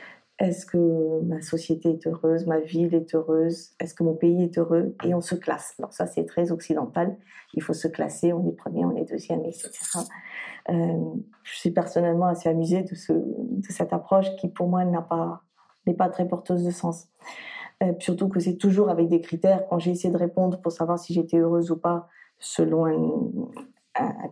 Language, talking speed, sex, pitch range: French, 200 wpm, female, 170-195 Hz